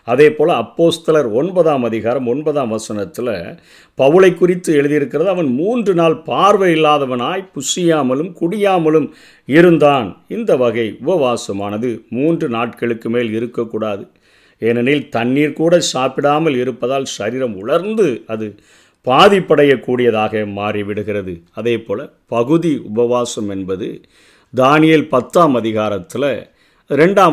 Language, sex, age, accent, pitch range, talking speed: Tamil, male, 50-69, native, 120-160 Hz, 90 wpm